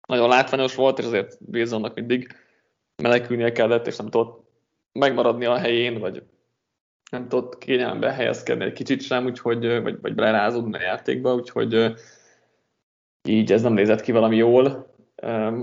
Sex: male